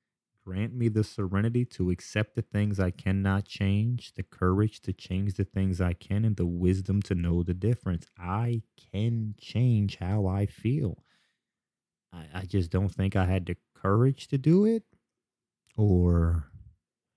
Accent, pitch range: American, 90-110 Hz